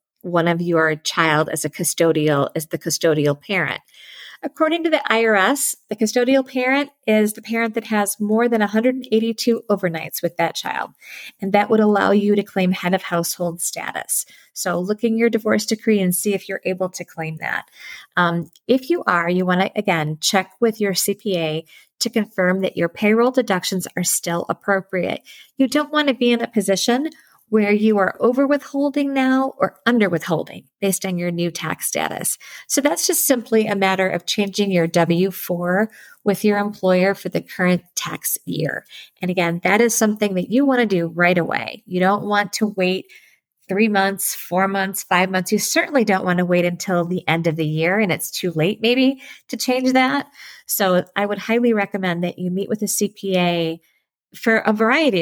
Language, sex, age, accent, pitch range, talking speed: English, female, 30-49, American, 175-225 Hz, 190 wpm